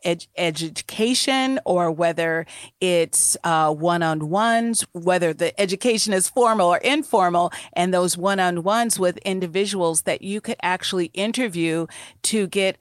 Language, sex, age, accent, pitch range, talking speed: English, female, 40-59, American, 165-200 Hz, 140 wpm